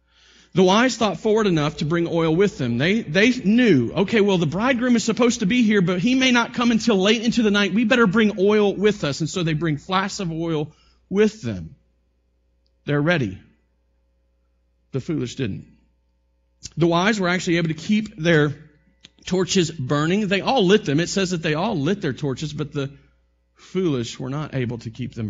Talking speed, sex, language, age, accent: 195 wpm, male, English, 40-59, American